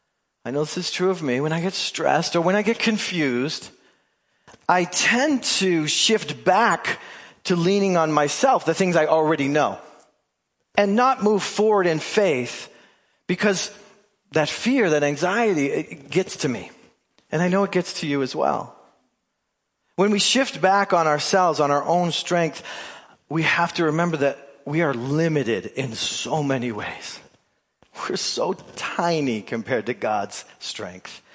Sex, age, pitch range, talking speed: male, 40-59, 150-205 Hz, 160 wpm